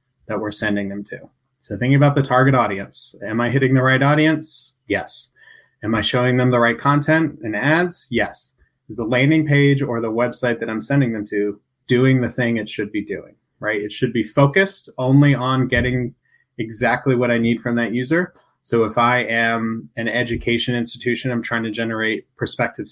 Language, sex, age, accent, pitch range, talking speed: English, male, 20-39, American, 115-135 Hz, 195 wpm